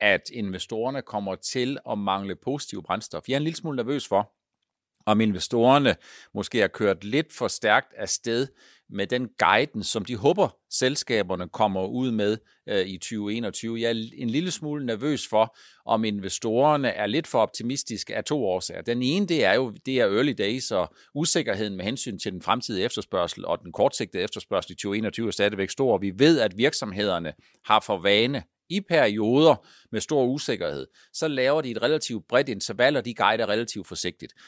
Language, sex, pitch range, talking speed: Danish, male, 100-130 Hz, 175 wpm